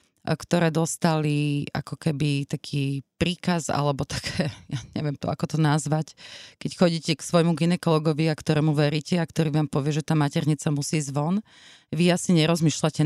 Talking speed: 160 wpm